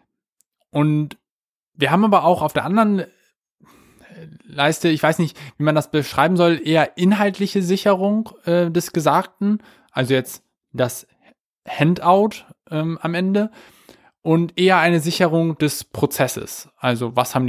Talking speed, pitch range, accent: 135 wpm, 140-175 Hz, German